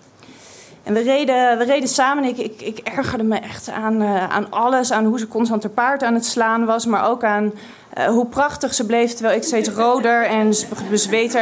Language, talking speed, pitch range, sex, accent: Dutch, 215 wpm, 215-255 Hz, female, Dutch